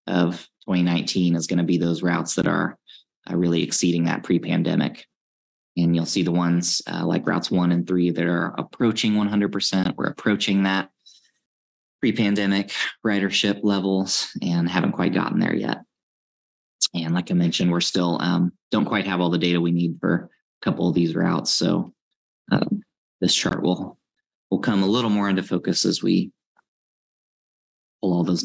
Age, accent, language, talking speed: 20-39, American, English, 165 wpm